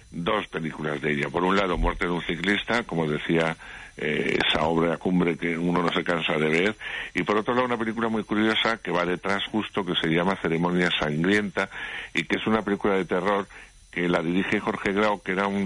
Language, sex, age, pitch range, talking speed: Spanish, male, 50-69, 85-95 Hz, 220 wpm